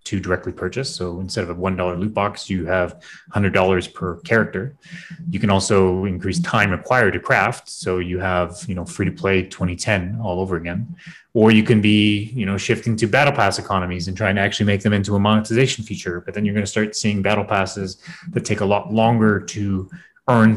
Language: English